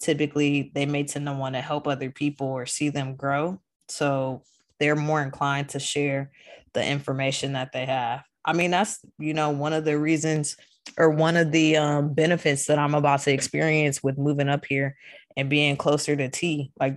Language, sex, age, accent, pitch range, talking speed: English, female, 20-39, American, 140-155 Hz, 195 wpm